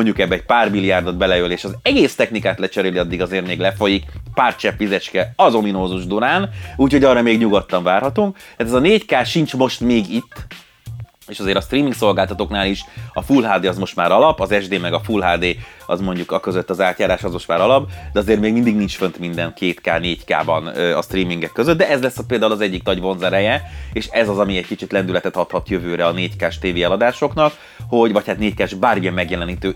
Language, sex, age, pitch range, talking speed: Hungarian, male, 30-49, 95-125 Hz, 205 wpm